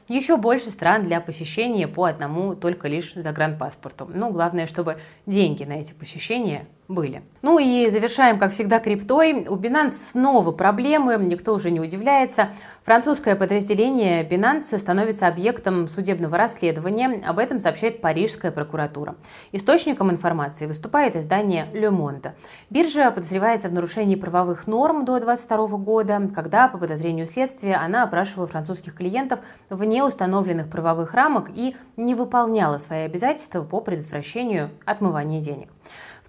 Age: 30-49